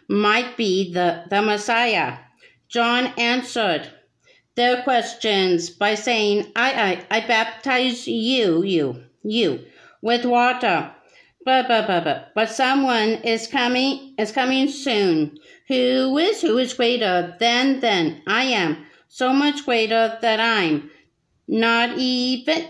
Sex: female